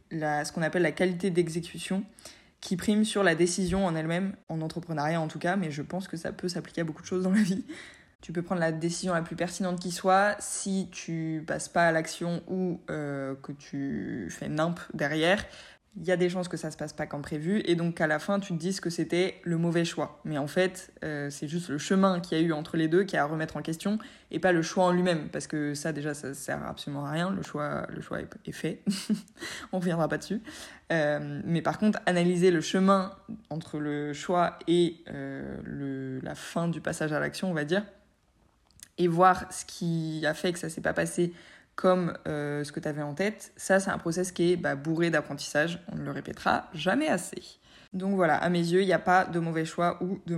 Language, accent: French, French